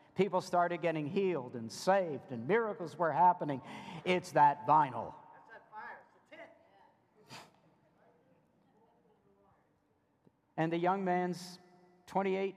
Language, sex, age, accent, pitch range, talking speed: English, male, 50-69, American, 160-195 Hz, 85 wpm